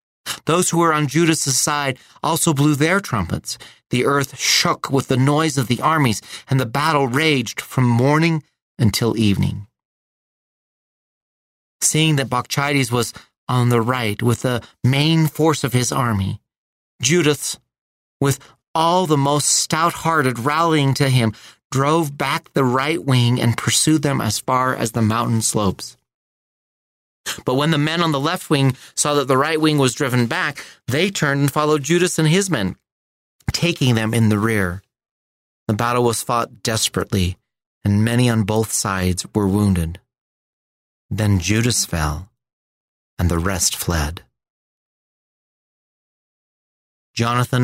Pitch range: 105-145 Hz